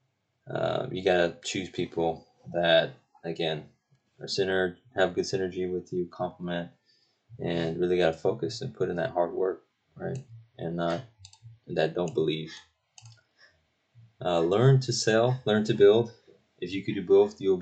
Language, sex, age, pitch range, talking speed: English, male, 20-39, 85-115 Hz, 155 wpm